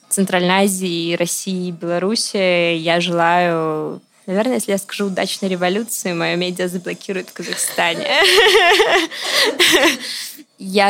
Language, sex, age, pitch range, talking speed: Russian, female, 20-39, 175-200 Hz, 100 wpm